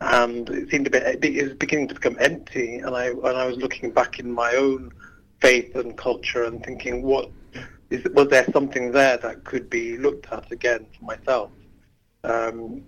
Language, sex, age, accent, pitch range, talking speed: English, male, 60-79, British, 120-135 Hz, 190 wpm